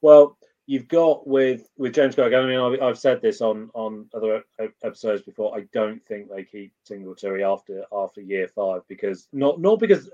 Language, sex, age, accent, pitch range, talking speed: English, male, 30-49, British, 95-125 Hz, 190 wpm